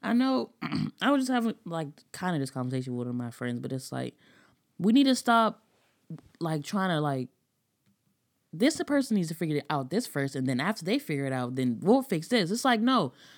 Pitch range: 145-230 Hz